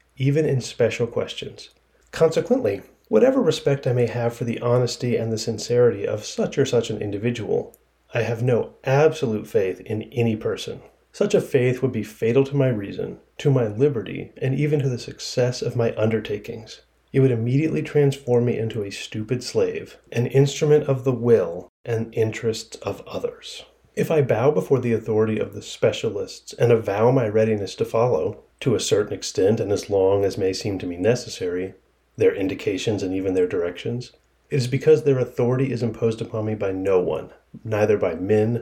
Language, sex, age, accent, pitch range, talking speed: English, male, 30-49, American, 110-150 Hz, 180 wpm